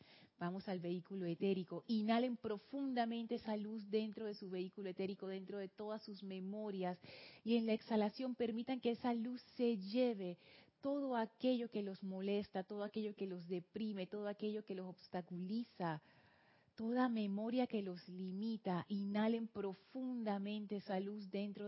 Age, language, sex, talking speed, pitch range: 30-49, Spanish, female, 145 wpm, 180-215 Hz